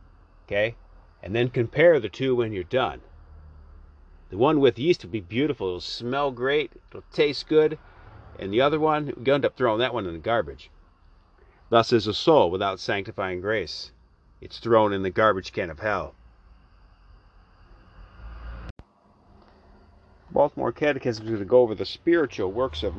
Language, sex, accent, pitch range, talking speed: English, male, American, 80-130 Hz, 160 wpm